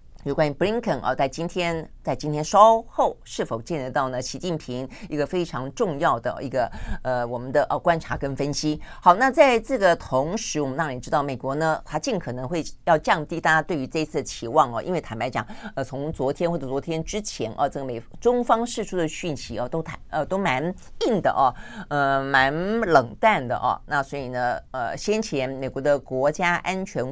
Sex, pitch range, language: female, 130-175 Hz, Chinese